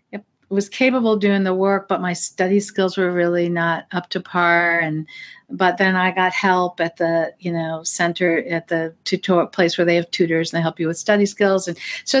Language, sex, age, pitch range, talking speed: English, female, 50-69, 170-205 Hz, 215 wpm